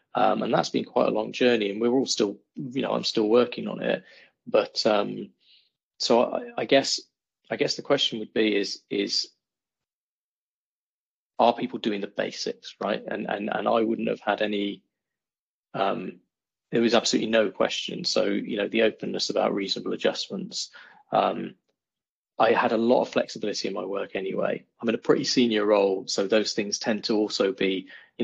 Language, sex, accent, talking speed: English, male, British, 185 wpm